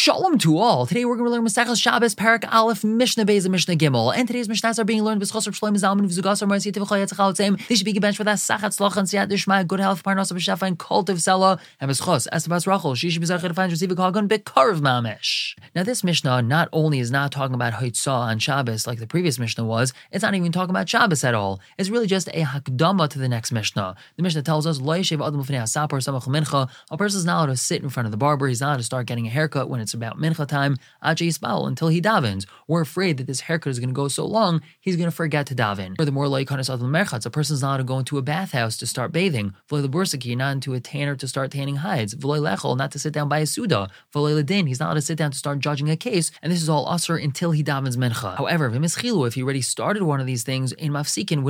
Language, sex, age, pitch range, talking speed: English, male, 20-39, 135-185 Hz, 195 wpm